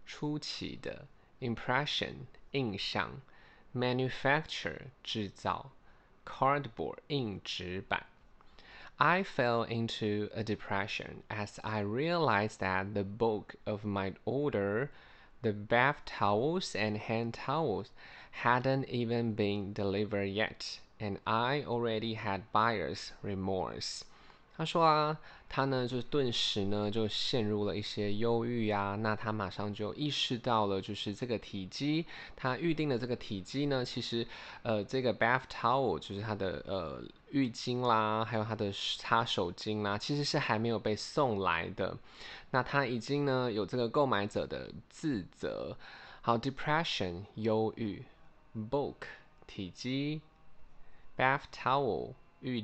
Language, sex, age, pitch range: Chinese, male, 20-39, 105-135 Hz